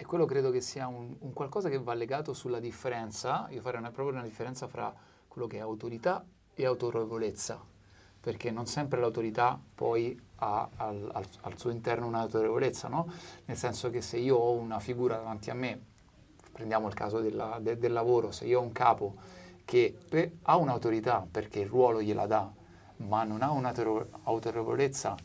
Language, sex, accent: Italian, male, native